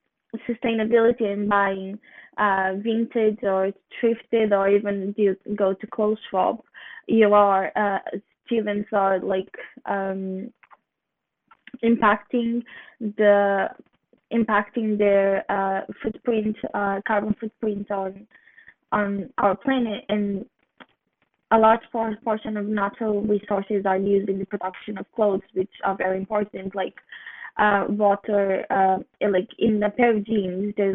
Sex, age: female, 10-29